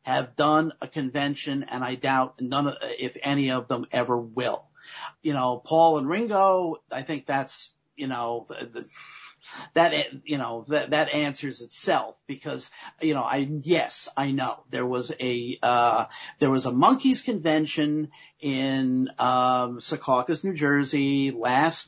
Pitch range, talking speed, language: 130-165 Hz, 155 wpm, English